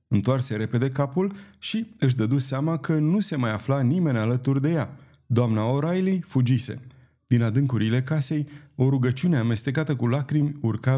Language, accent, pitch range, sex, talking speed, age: Romanian, native, 115-145 Hz, male, 155 wpm, 30-49